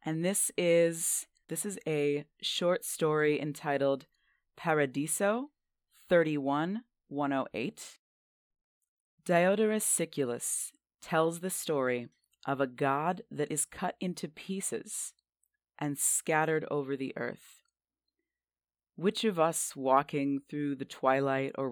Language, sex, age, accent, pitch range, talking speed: English, female, 30-49, American, 135-180 Hz, 105 wpm